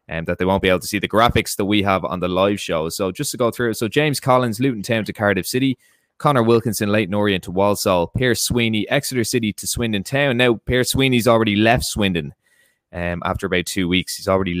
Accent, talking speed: Irish, 235 wpm